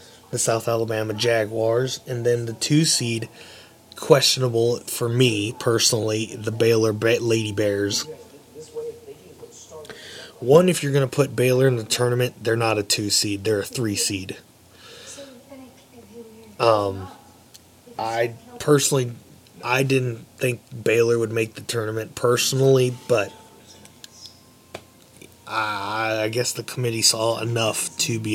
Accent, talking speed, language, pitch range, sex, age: American, 115 wpm, English, 110-130 Hz, male, 20-39